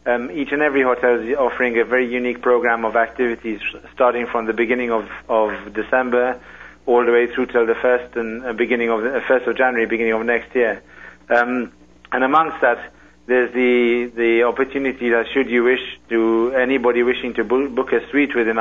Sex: male